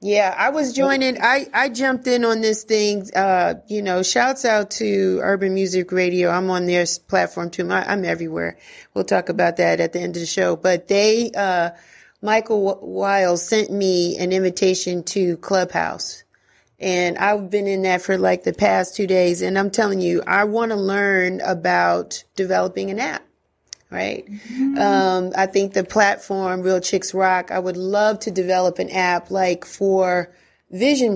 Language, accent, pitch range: English, American, 185-240 Hz